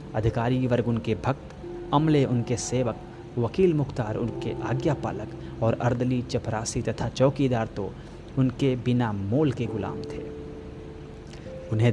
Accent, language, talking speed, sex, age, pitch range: native, Hindi, 120 wpm, male, 30-49, 110-130 Hz